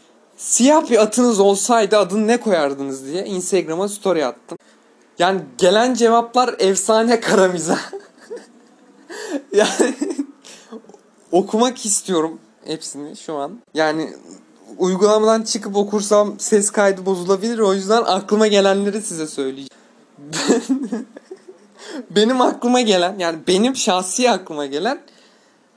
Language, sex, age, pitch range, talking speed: Turkish, male, 30-49, 185-240 Hz, 100 wpm